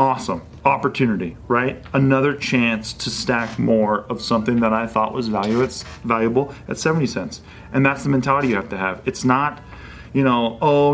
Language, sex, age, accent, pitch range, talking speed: English, male, 40-59, American, 120-155 Hz, 170 wpm